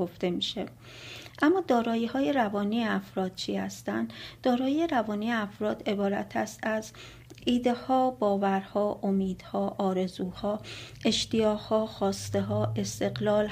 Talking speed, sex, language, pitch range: 120 wpm, female, Persian, 190-220 Hz